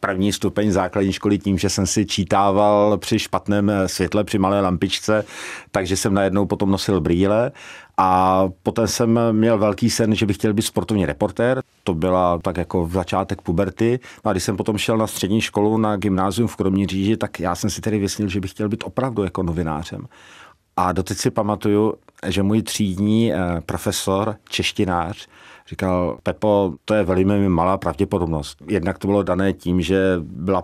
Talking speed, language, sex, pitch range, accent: 175 wpm, Czech, male, 95-105 Hz, native